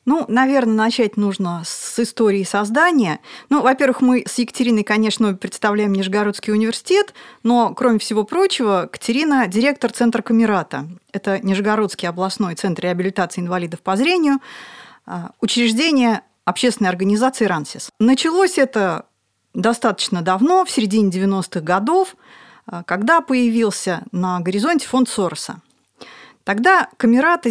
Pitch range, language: 190-255 Hz, Russian